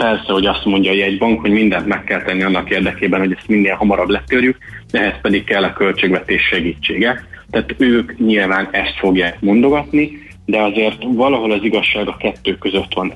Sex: male